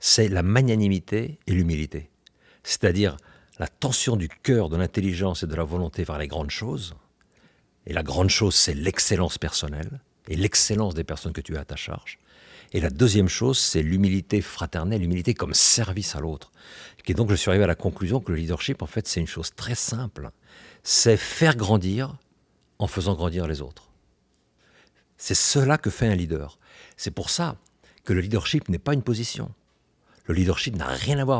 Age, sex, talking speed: 60-79, male, 185 wpm